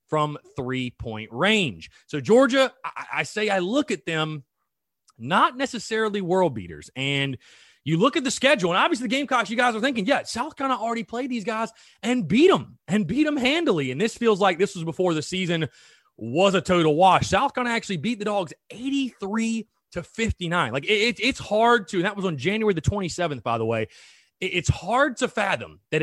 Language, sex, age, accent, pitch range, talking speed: English, male, 30-49, American, 155-230 Hz, 200 wpm